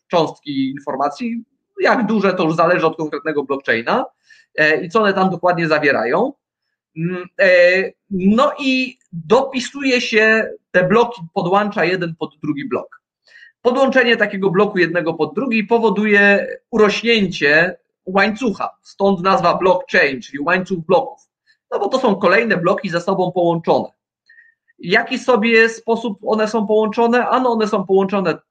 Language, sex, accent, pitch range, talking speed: Polish, male, native, 170-225 Hz, 130 wpm